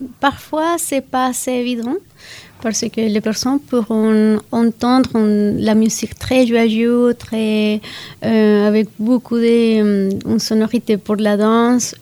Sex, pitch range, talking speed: female, 210-235 Hz, 130 wpm